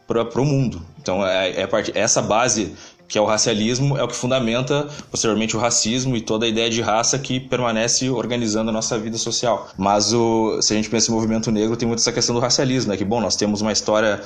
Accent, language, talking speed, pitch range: Brazilian, Portuguese, 235 wpm, 105-120 Hz